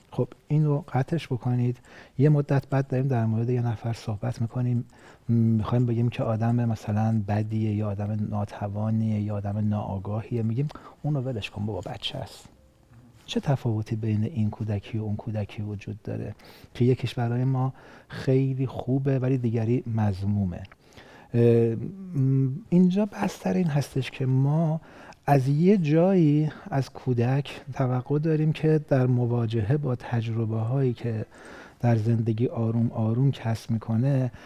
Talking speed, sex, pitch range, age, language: 135 wpm, male, 115-135 Hz, 40-59, Persian